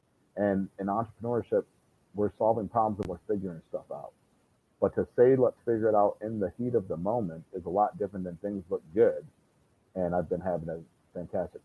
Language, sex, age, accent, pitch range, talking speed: English, male, 40-59, American, 100-120 Hz, 195 wpm